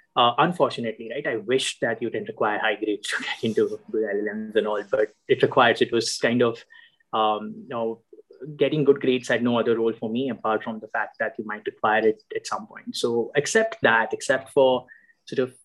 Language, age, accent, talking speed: English, 20-39, Indian, 210 wpm